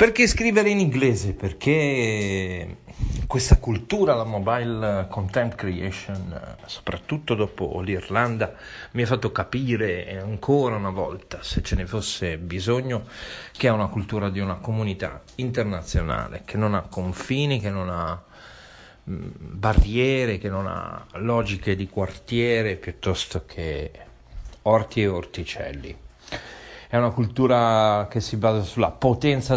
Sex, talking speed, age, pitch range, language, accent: male, 125 wpm, 40-59, 95-125 Hz, Italian, native